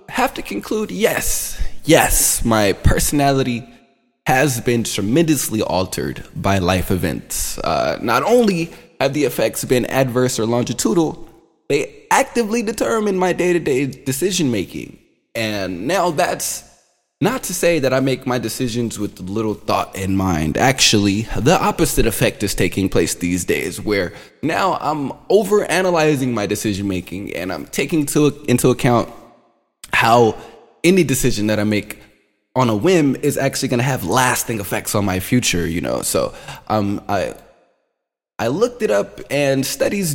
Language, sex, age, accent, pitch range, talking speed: English, male, 20-39, American, 105-155 Hz, 150 wpm